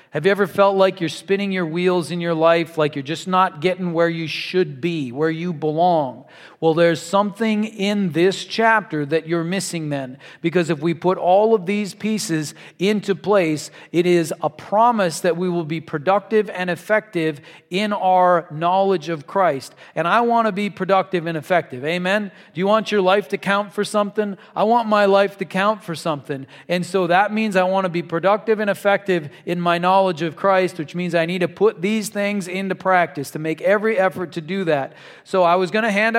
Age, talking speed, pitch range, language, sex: 40-59, 205 wpm, 170-200 Hz, English, male